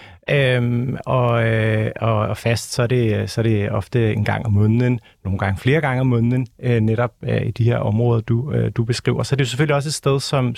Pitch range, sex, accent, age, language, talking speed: 115-140 Hz, male, native, 40-59, Danish, 235 wpm